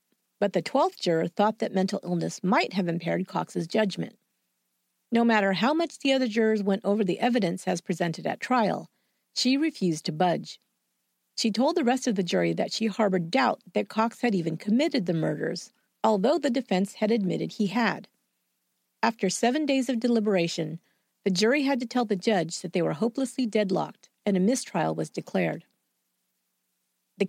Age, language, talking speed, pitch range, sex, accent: 50-69, English, 175 wpm, 180-245 Hz, female, American